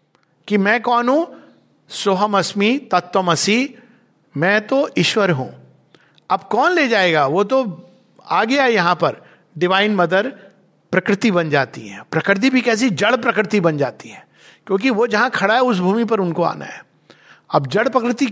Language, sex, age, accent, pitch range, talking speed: Hindi, male, 50-69, native, 155-220 Hz, 160 wpm